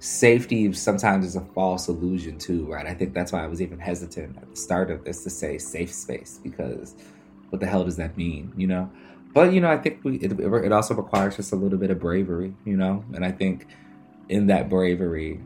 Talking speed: 220 wpm